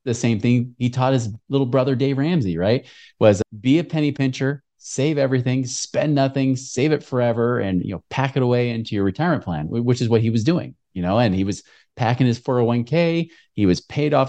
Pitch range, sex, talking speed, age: 110-150 Hz, male, 215 wpm, 30-49